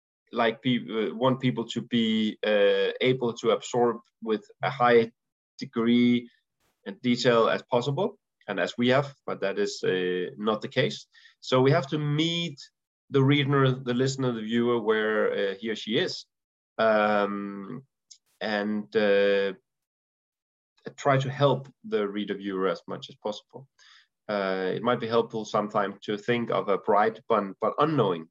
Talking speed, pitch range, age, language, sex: 155 wpm, 105-135 Hz, 30-49, Danish, male